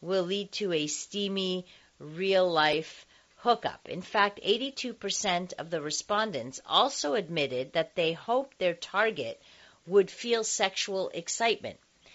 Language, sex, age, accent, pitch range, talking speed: English, female, 40-59, American, 160-225 Hz, 120 wpm